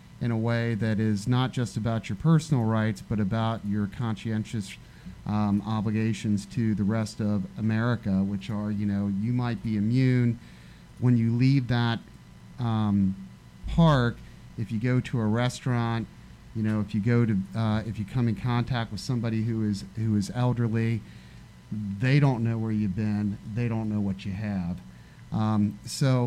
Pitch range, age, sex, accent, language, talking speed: 105-125 Hz, 40-59, male, American, English, 170 wpm